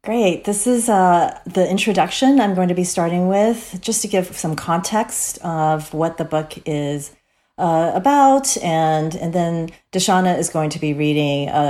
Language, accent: English, American